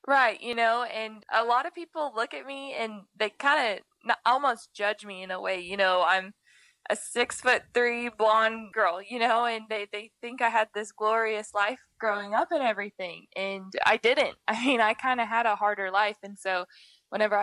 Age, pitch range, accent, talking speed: 20-39, 195-230 Hz, American, 205 wpm